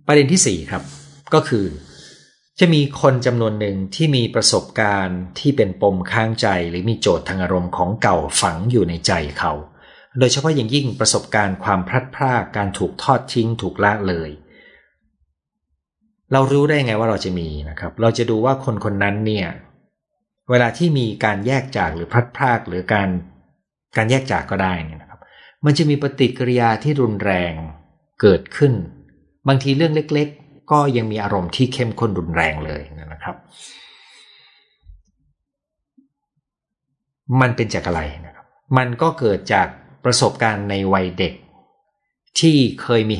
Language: Thai